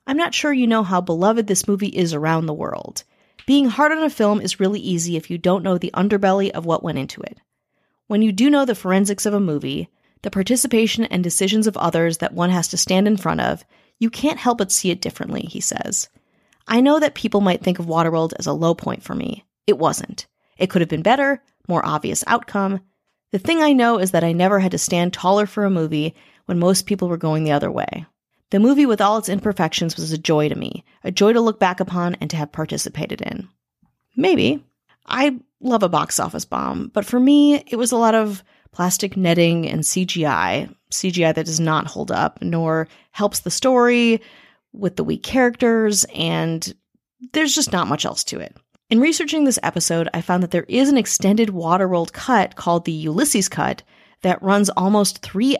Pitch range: 170-230 Hz